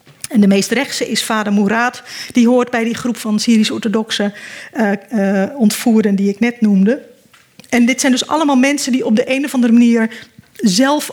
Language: Dutch